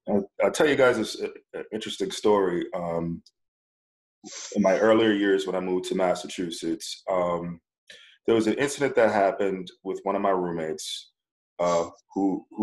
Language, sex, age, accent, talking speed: English, male, 20-39, American, 150 wpm